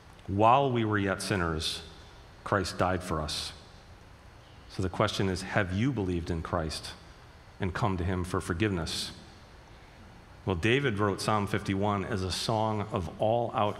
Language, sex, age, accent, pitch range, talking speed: English, male, 40-59, American, 95-115 Hz, 150 wpm